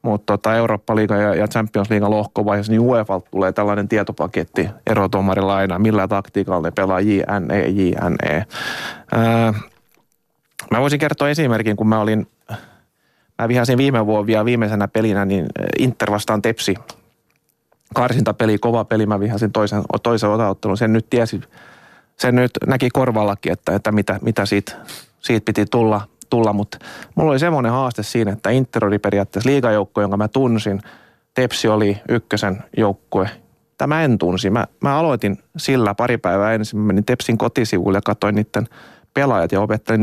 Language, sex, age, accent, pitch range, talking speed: Finnish, male, 30-49, native, 100-115 Hz, 145 wpm